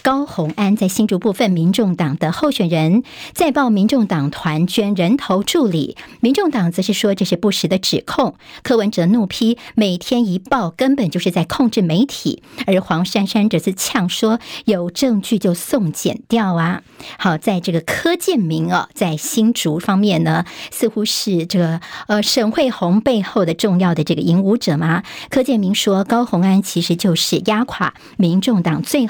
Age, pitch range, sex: 50-69, 175-230 Hz, male